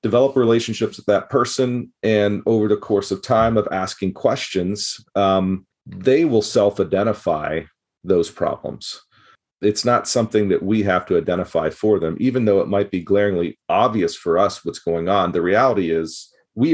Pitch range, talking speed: 90-110 Hz, 165 wpm